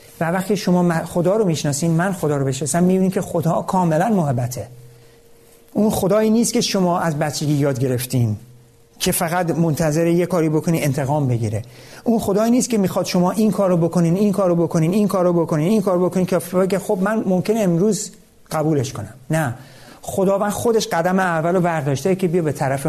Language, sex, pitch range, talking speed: Persian, male, 140-185 Hz, 180 wpm